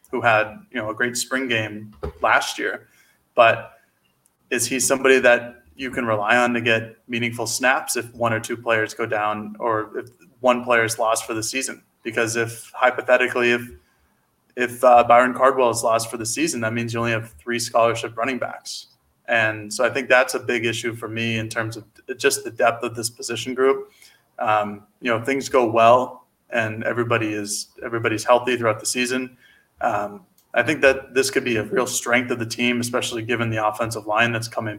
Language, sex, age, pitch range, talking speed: English, male, 20-39, 110-125 Hz, 200 wpm